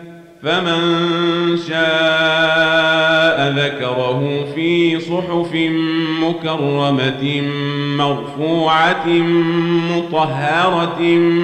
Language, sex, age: Arabic, male, 40-59